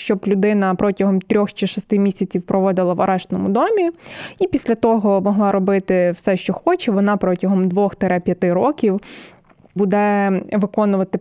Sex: female